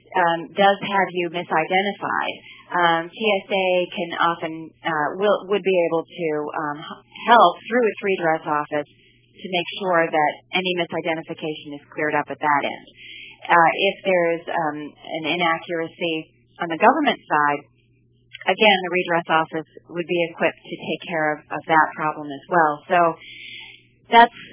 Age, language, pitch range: 30-49, English, 160-195 Hz